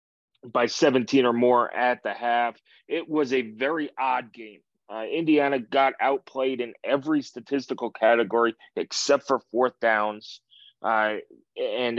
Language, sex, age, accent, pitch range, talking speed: English, male, 30-49, American, 115-135 Hz, 135 wpm